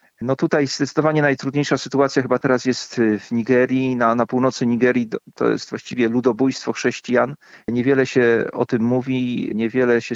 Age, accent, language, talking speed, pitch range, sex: 40-59, native, Polish, 155 wpm, 115-130 Hz, male